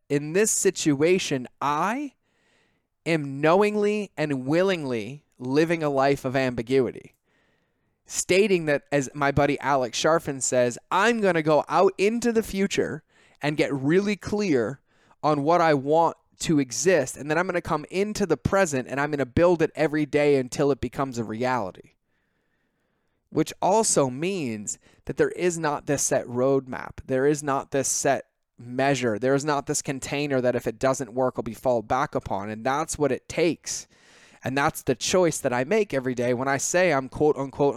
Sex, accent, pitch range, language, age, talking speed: male, American, 130-165 Hz, English, 20-39, 180 wpm